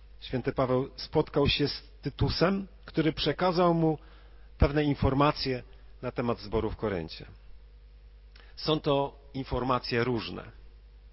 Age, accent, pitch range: 40-59, native, 120-175 Hz